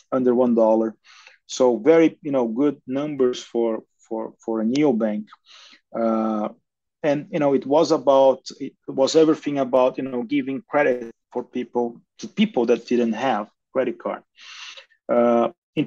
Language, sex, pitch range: English, male, 115-145 Hz